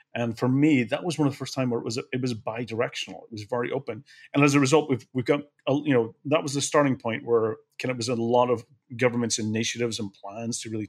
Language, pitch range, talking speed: English, 115-130 Hz, 265 wpm